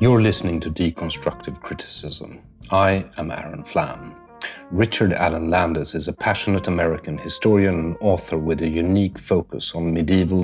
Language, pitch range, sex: English, 85-100 Hz, male